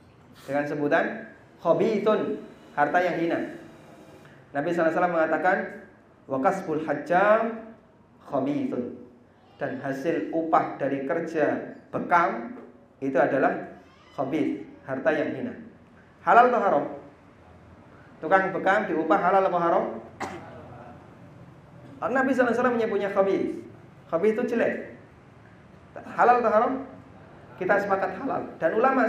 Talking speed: 110 wpm